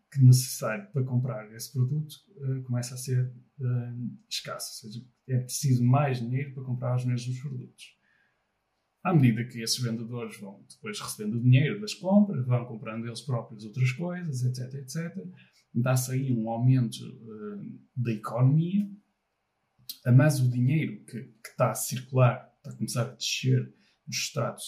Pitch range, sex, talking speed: 120-140 Hz, male, 160 wpm